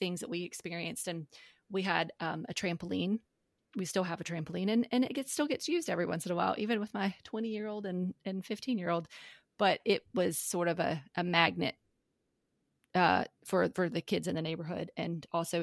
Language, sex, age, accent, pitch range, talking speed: English, female, 30-49, American, 175-210 Hz, 215 wpm